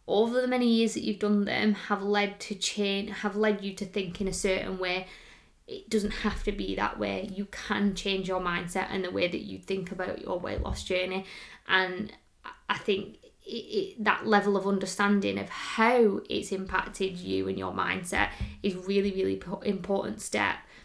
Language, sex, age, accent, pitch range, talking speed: English, female, 20-39, British, 185-210 Hz, 185 wpm